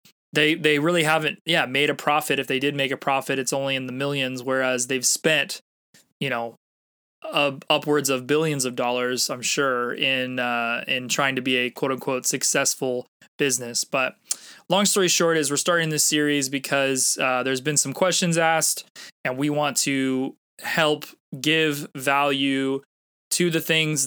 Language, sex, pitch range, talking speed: English, male, 135-160 Hz, 170 wpm